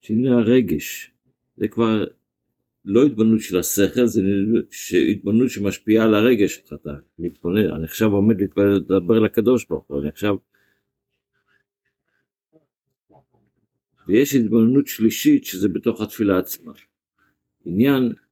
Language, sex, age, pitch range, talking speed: Hebrew, male, 60-79, 95-115 Hz, 100 wpm